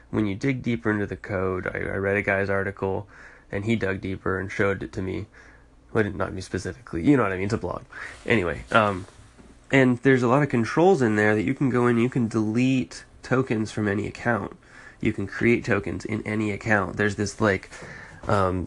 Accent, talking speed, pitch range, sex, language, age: American, 215 wpm, 100-115 Hz, male, English, 20-39